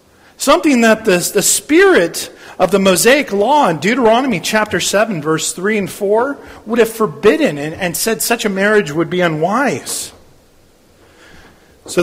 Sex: male